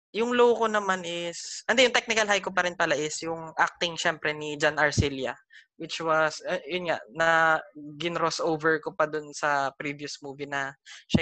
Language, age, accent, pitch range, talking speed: English, 20-39, Filipino, 155-210 Hz, 185 wpm